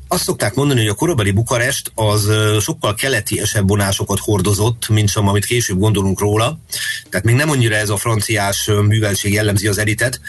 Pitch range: 100-115 Hz